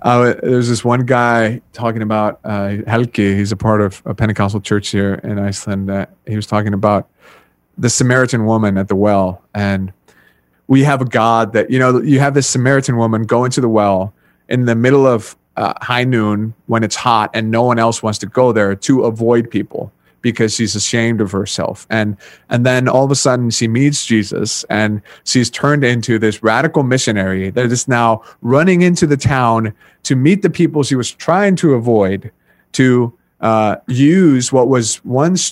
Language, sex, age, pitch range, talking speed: English, male, 30-49, 110-140 Hz, 190 wpm